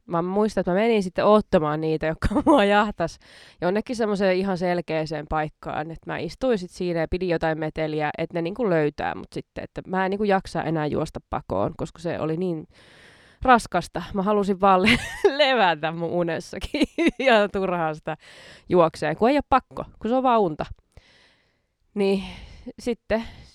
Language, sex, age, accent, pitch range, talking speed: Finnish, female, 20-39, native, 160-210 Hz, 165 wpm